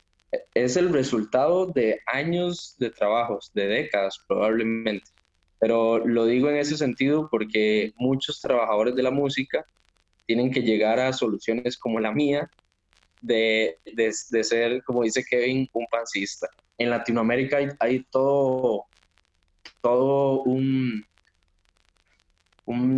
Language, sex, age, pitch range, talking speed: Spanish, male, 20-39, 105-130 Hz, 125 wpm